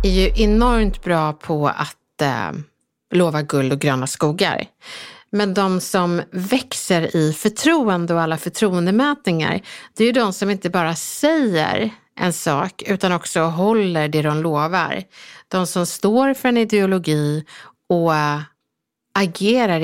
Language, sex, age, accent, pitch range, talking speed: Swedish, female, 50-69, native, 165-235 Hz, 140 wpm